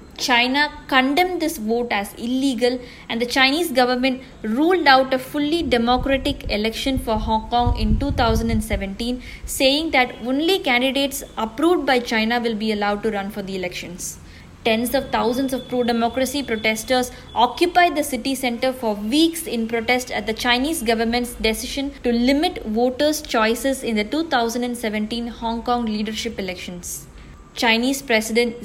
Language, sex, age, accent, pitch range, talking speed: English, female, 20-39, Indian, 220-265 Hz, 140 wpm